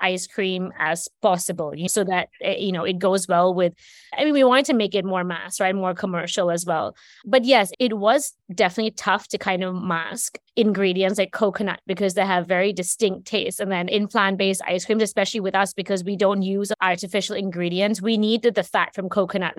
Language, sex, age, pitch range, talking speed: English, female, 20-39, 185-225 Hz, 200 wpm